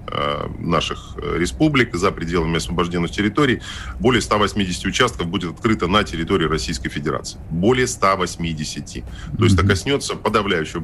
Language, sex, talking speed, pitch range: Russian, male, 120 wpm, 85-105 Hz